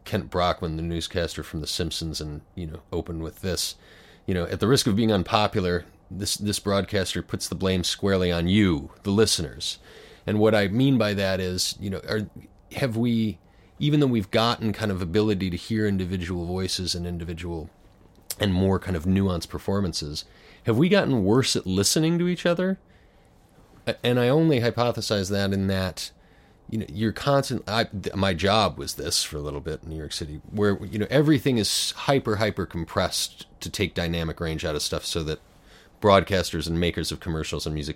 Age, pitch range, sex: 30-49, 85-105 Hz, male